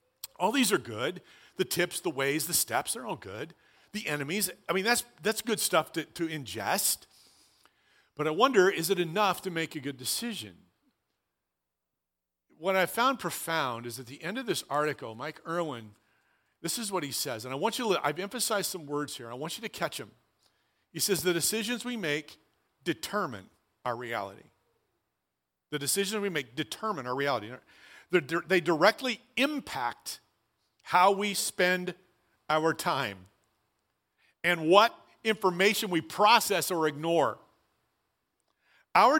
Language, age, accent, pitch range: English, 50-69, American, 155-225 Hz